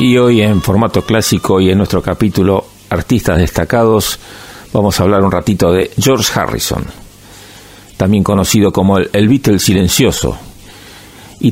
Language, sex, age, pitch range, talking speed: Spanish, male, 50-69, 100-125 Hz, 140 wpm